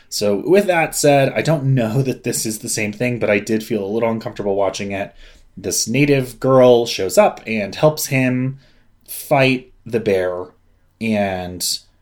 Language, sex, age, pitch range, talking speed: English, male, 20-39, 100-130 Hz, 170 wpm